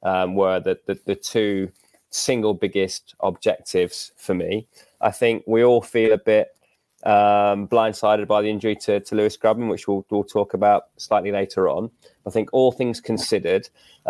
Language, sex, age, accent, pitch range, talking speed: English, male, 20-39, British, 95-110 Hz, 175 wpm